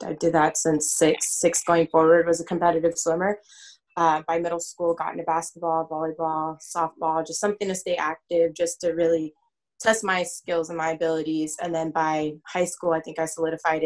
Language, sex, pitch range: English, female, 160-180 Hz